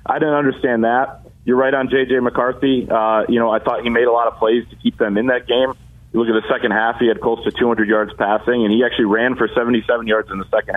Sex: male